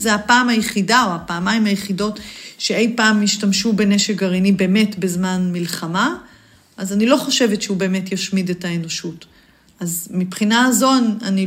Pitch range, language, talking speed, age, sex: 190-240 Hz, Hebrew, 140 wpm, 40-59, female